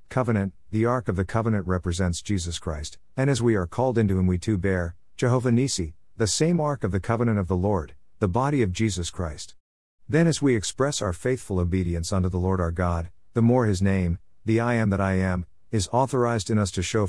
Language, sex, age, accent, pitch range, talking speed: English, male, 50-69, American, 90-110 Hz, 220 wpm